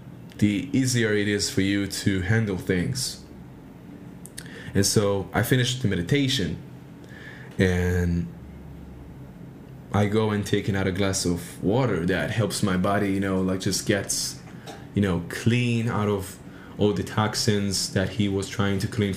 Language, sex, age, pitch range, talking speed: English, male, 20-39, 95-125 Hz, 150 wpm